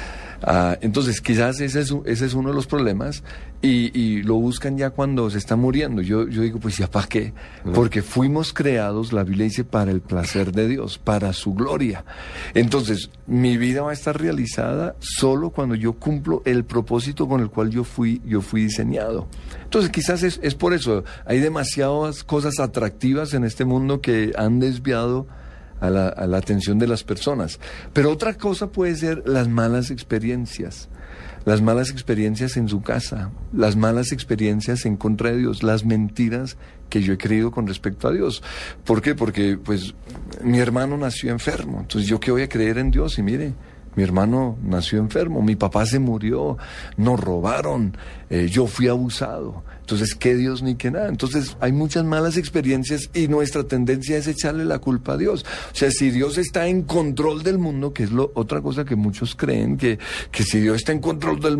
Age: 50-69